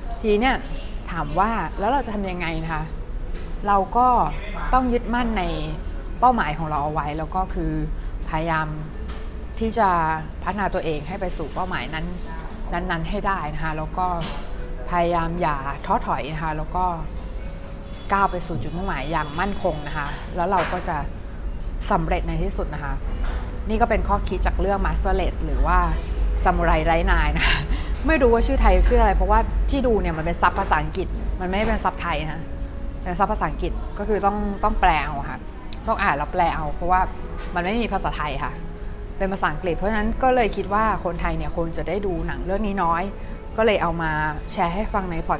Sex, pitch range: female, 160-205 Hz